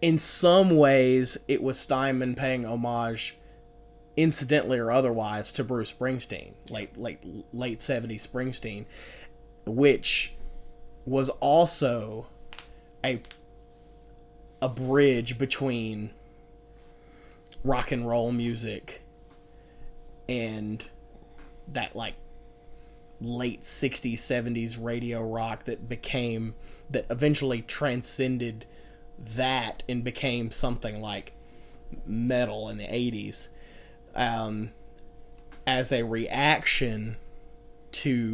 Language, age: English, 30-49